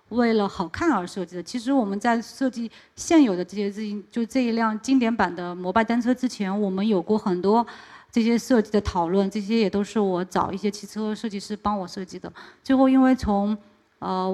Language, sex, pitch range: Chinese, female, 205-260 Hz